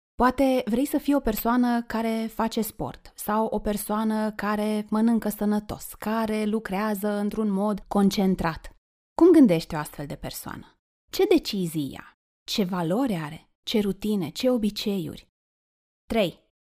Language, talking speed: Romanian, 135 wpm